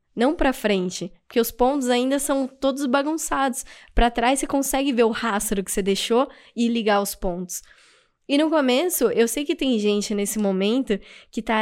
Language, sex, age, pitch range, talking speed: Portuguese, female, 10-29, 215-275 Hz, 185 wpm